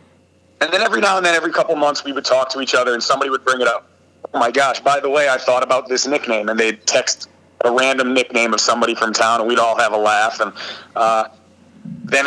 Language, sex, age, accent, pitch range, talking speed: English, male, 30-49, American, 115-140 Hz, 255 wpm